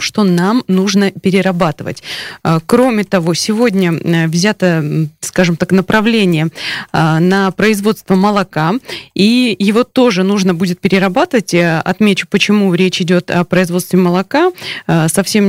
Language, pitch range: Russian, 175-205 Hz